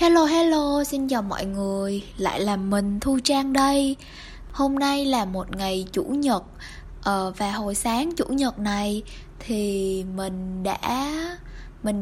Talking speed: 150 wpm